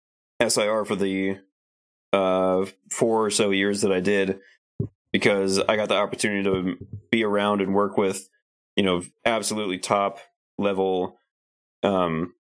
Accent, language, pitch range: American, English, 95-105 Hz